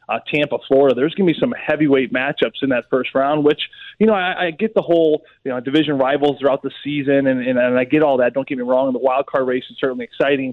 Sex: male